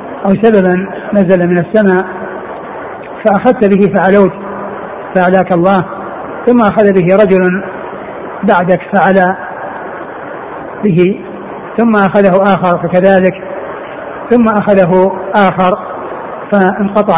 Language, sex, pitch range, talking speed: Arabic, male, 180-200 Hz, 85 wpm